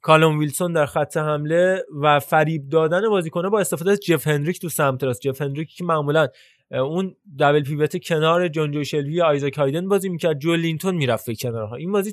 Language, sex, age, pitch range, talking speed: Persian, male, 20-39, 135-165 Hz, 190 wpm